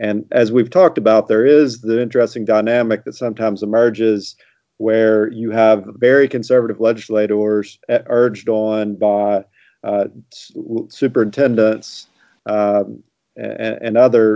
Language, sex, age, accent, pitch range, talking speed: English, male, 40-59, American, 105-120 Hz, 115 wpm